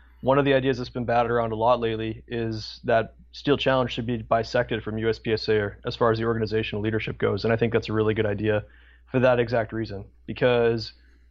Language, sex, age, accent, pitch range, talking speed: English, male, 20-39, American, 110-120 Hz, 220 wpm